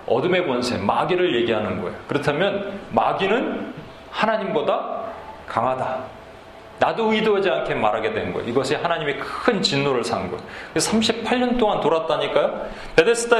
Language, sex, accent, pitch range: Korean, male, native, 145-210 Hz